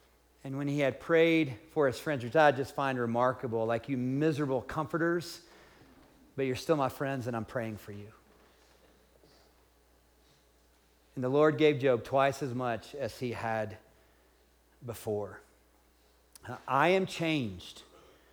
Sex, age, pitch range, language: male, 40-59, 105-160 Hz, English